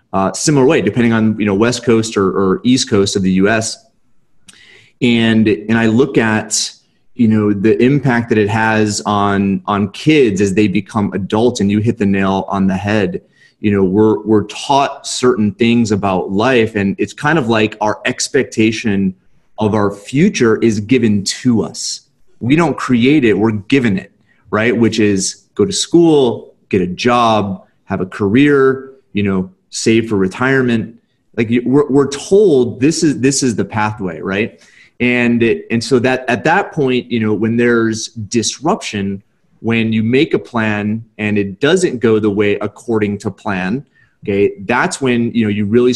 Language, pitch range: English, 105-120 Hz